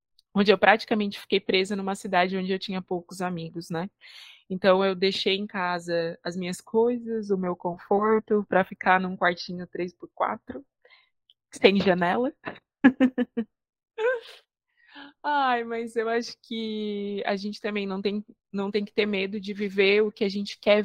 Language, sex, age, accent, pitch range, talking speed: Portuguese, female, 20-39, Brazilian, 190-215 Hz, 150 wpm